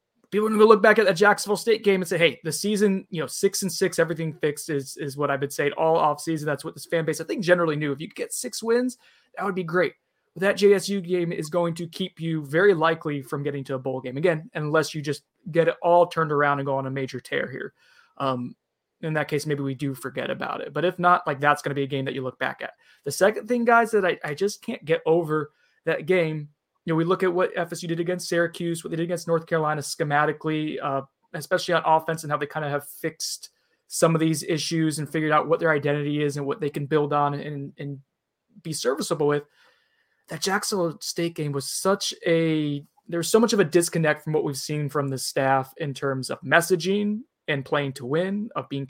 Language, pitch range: English, 145-180 Hz